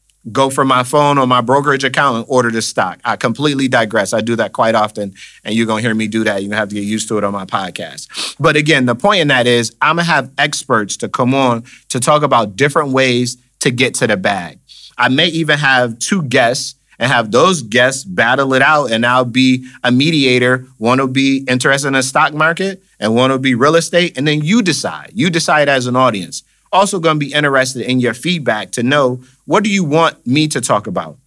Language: English